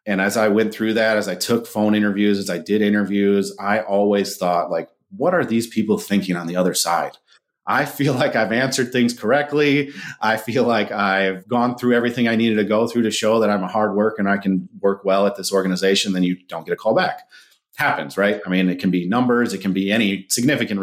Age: 30-49